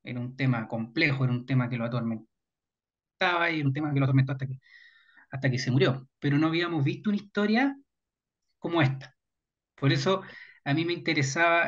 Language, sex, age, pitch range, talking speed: Spanish, male, 30-49, 135-185 Hz, 185 wpm